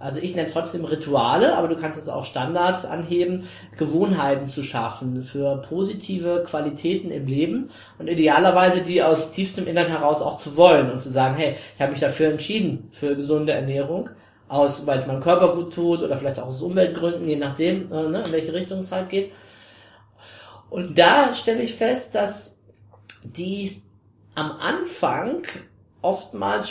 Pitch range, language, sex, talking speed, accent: 135-170 Hz, German, male, 165 wpm, German